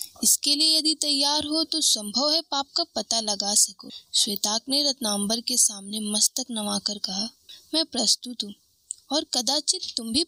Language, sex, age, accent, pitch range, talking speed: Hindi, female, 20-39, native, 225-305 Hz, 165 wpm